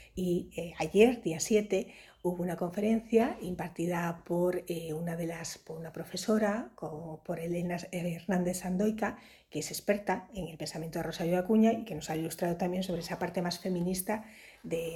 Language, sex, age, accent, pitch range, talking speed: Spanish, female, 40-59, Spanish, 165-195 Hz, 160 wpm